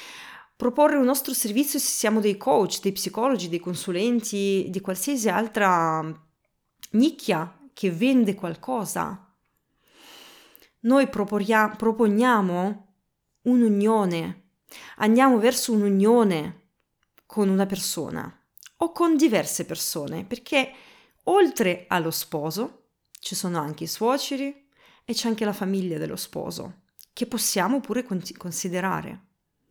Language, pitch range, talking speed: Italian, 195-260 Hz, 105 wpm